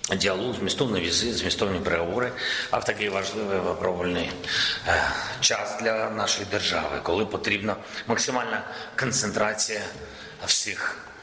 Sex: male